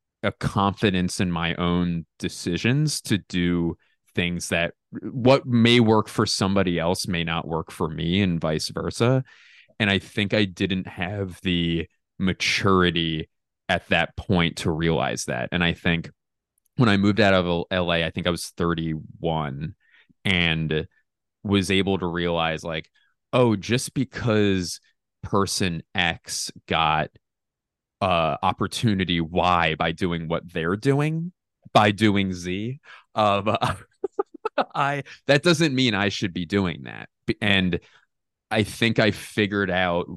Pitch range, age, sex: 85-110 Hz, 20-39, male